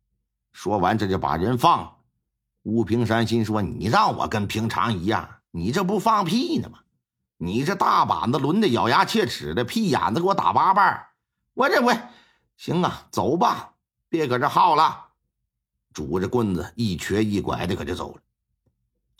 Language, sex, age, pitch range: Chinese, male, 50-69, 105-155 Hz